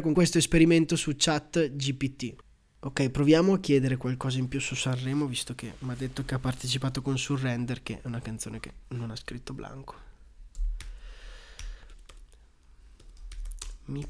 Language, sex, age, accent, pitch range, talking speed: Italian, male, 20-39, native, 130-160 Hz, 150 wpm